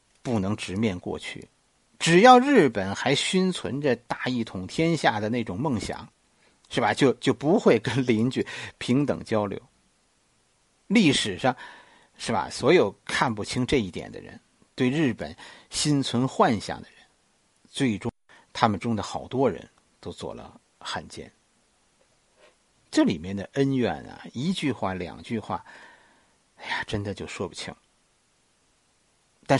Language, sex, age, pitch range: Chinese, male, 50-69, 105-160 Hz